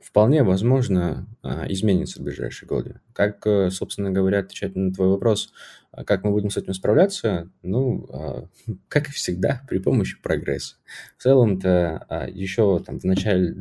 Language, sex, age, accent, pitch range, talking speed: Russian, male, 20-39, native, 90-115 Hz, 135 wpm